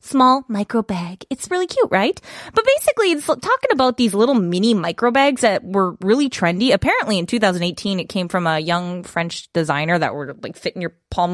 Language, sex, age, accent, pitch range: Korean, female, 20-39, American, 185-270 Hz